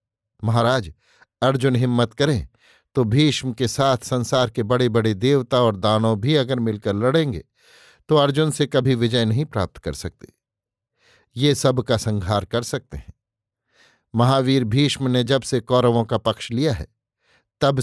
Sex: male